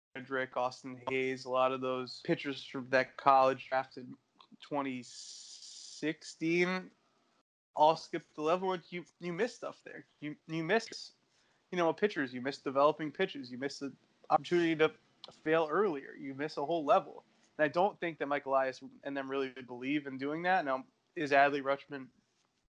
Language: English